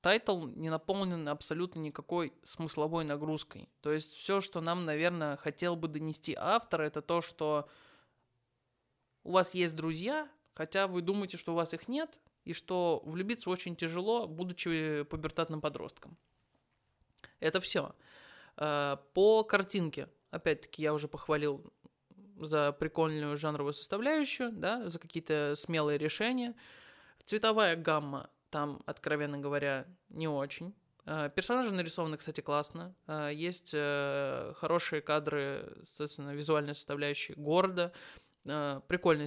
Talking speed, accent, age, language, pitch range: 115 wpm, native, 20-39, Russian, 150-175 Hz